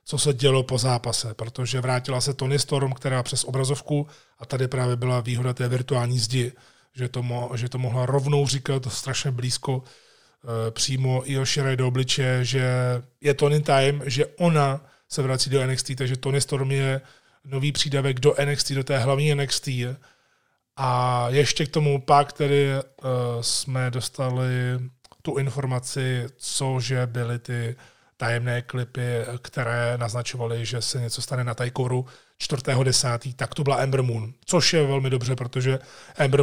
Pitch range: 125-145 Hz